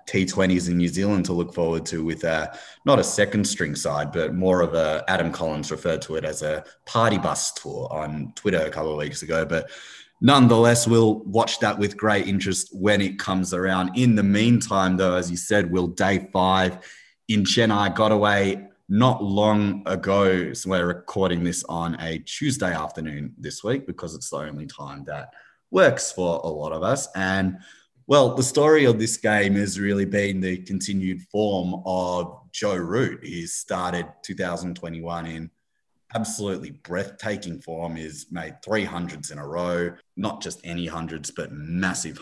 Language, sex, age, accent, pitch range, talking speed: English, male, 20-39, Australian, 80-100 Hz, 175 wpm